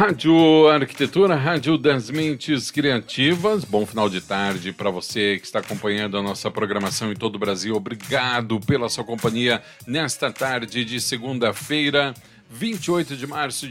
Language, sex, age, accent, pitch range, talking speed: Portuguese, male, 50-69, Brazilian, 110-145 Hz, 145 wpm